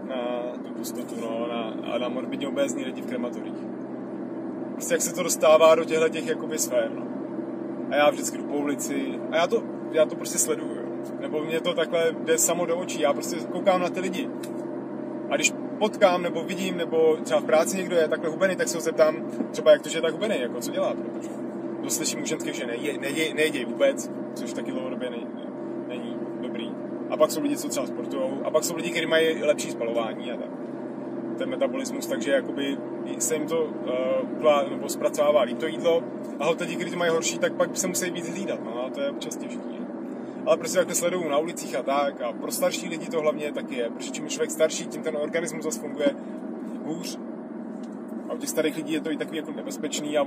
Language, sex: Czech, male